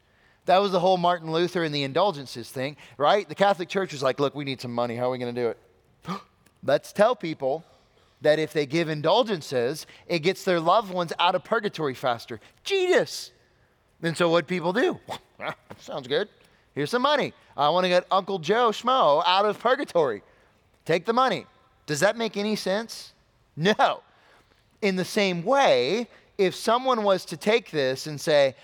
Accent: American